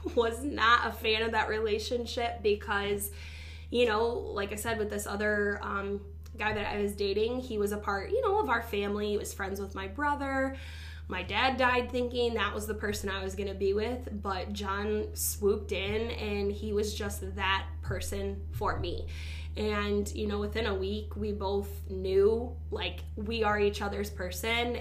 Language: English